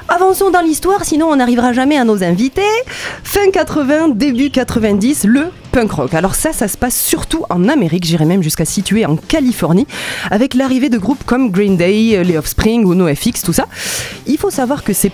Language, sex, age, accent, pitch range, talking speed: French, female, 20-39, French, 175-270 Hz, 195 wpm